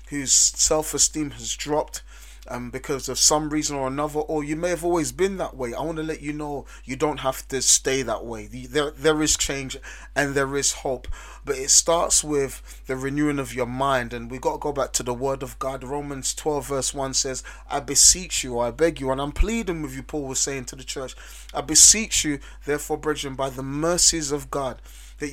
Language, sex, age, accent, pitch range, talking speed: English, male, 30-49, British, 130-160 Hz, 225 wpm